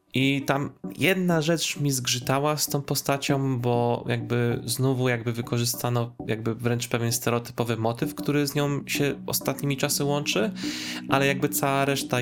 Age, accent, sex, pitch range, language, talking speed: 20-39, native, male, 105-130 Hz, Polish, 145 wpm